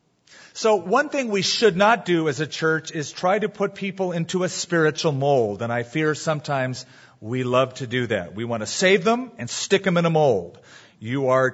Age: 40-59